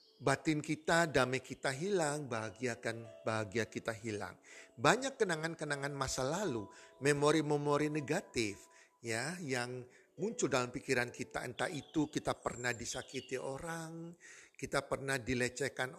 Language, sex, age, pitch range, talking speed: Indonesian, male, 50-69, 140-170 Hz, 115 wpm